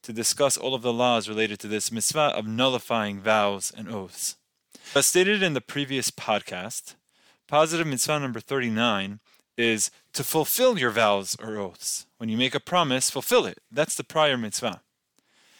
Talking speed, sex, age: 165 wpm, male, 20-39